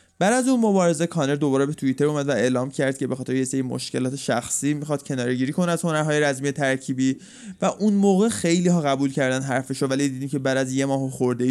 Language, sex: Persian, male